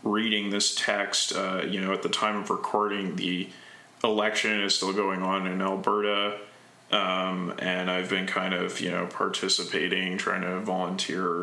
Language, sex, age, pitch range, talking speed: English, male, 20-39, 95-105 Hz, 165 wpm